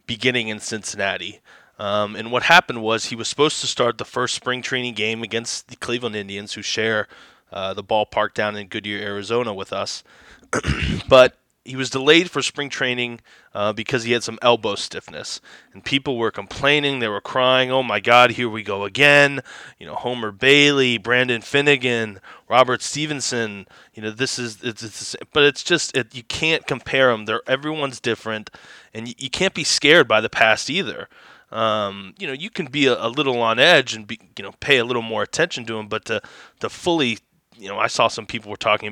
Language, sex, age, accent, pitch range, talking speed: English, male, 20-39, American, 110-135 Hz, 200 wpm